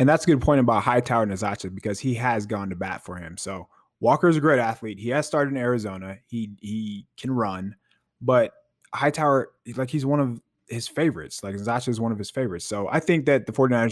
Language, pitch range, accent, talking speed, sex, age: English, 115-140 Hz, American, 230 wpm, male, 20-39